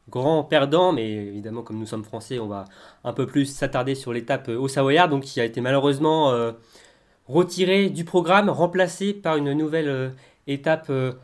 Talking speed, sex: 180 wpm, male